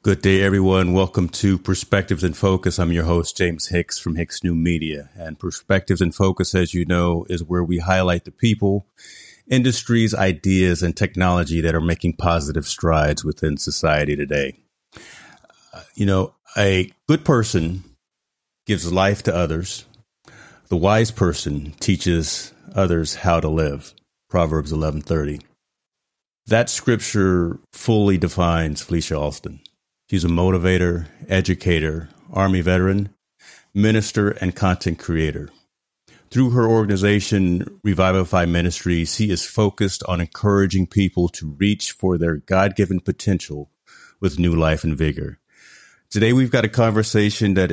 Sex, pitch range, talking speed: male, 85-100 Hz, 130 wpm